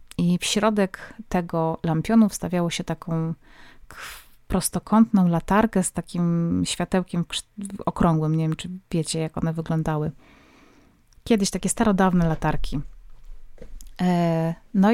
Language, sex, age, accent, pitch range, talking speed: Polish, female, 30-49, native, 170-200 Hz, 105 wpm